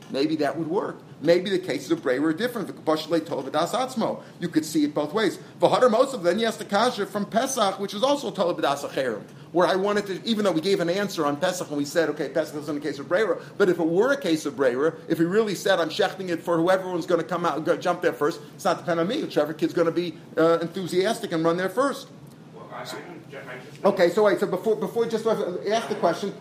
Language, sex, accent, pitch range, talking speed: English, male, American, 160-200 Hz, 230 wpm